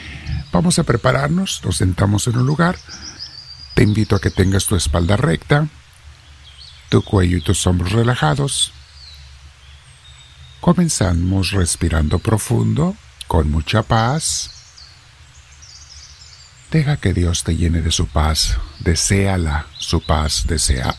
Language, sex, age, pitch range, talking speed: Spanish, male, 50-69, 80-115 Hz, 115 wpm